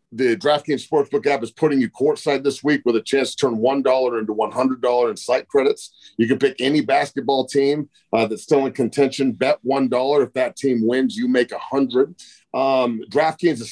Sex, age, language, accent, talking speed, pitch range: male, 40-59, English, American, 195 wpm, 130-185 Hz